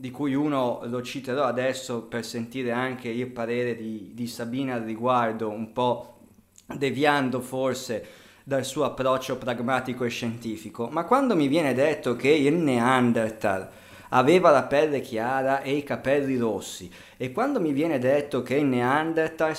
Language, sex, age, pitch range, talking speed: Italian, male, 20-39, 120-145 Hz, 155 wpm